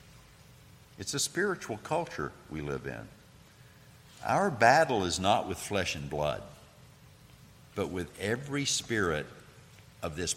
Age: 60-79